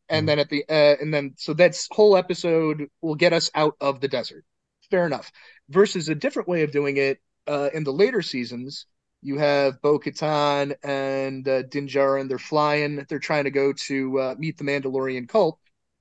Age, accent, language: 30-49, American, English